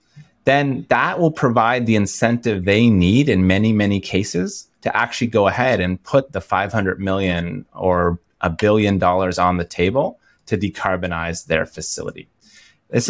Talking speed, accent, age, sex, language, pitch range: 150 wpm, American, 30-49, male, English, 95-120 Hz